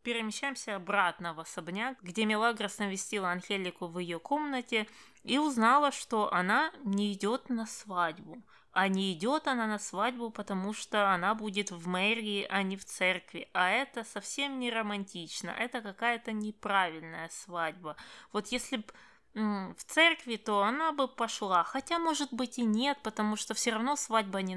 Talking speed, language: 160 wpm, Russian